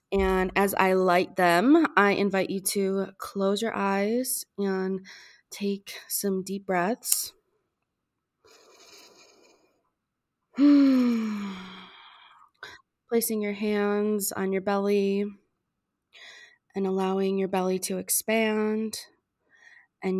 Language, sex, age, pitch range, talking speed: English, female, 20-39, 185-205 Hz, 90 wpm